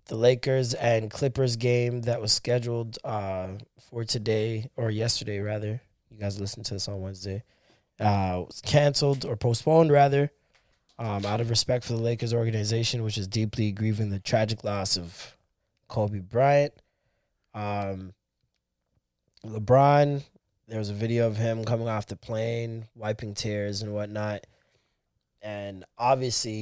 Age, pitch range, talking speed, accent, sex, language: 20-39, 105-125 Hz, 140 wpm, American, male, English